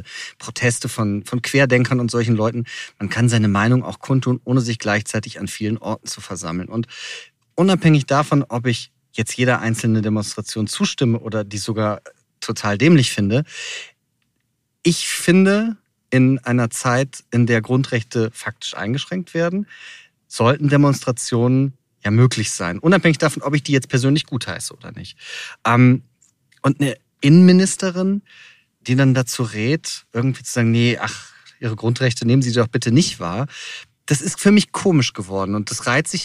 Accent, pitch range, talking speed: German, 115-145 Hz, 155 wpm